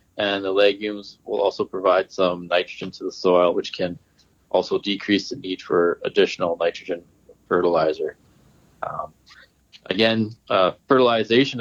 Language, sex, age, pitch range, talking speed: English, male, 20-39, 100-120 Hz, 130 wpm